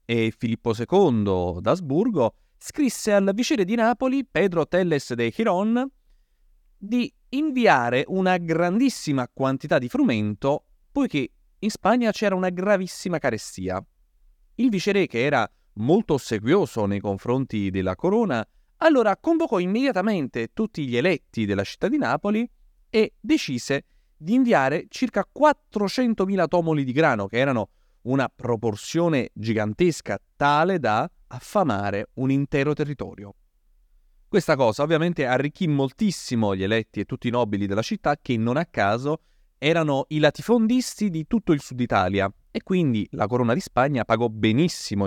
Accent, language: native, Italian